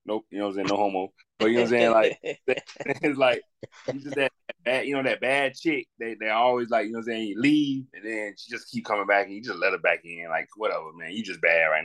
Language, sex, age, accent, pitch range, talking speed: English, male, 20-39, American, 105-130 Hz, 295 wpm